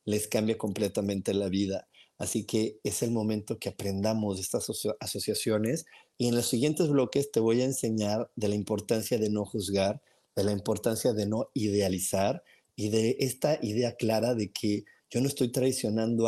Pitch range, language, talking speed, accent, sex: 105-130 Hz, Spanish, 175 wpm, Mexican, male